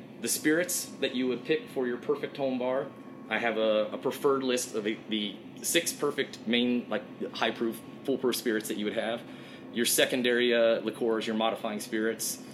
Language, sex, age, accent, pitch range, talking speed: English, male, 30-49, American, 110-130 Hz, 185 wpm